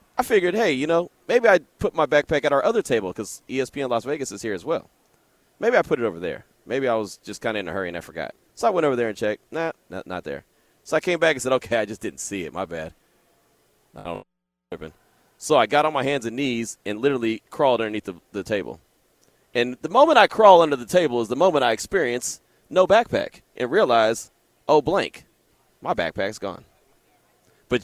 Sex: male